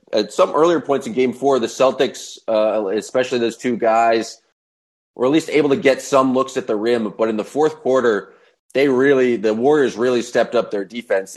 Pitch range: 110-130 Hz